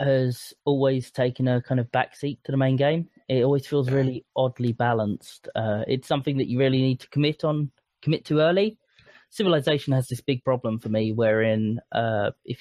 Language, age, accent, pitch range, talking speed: English, 20-39, British, 120-150 Hz, 190 wpm